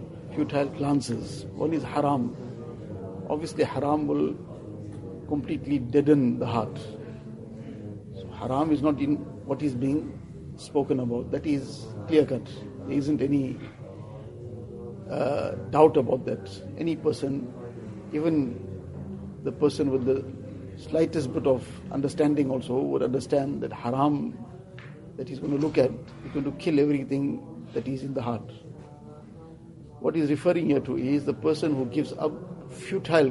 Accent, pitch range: Indian, 120-150 Hz